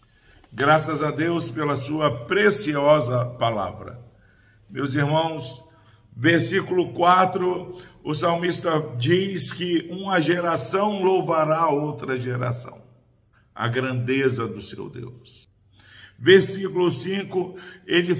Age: 50-69